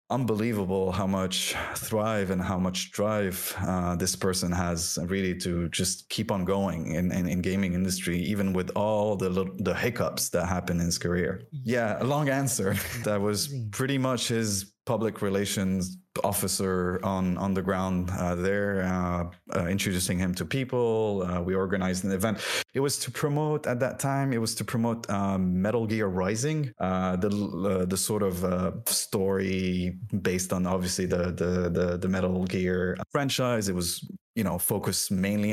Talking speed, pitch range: 175 wpm, 90-105 Hz